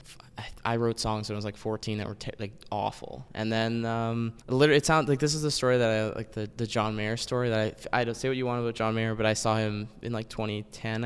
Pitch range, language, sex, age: 110-130 Hz, English, male, 20-39